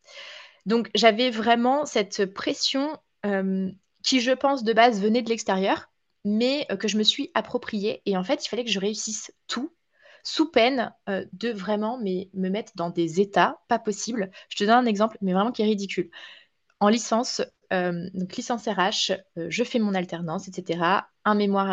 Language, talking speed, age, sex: French, 185 wpm, 20-39, female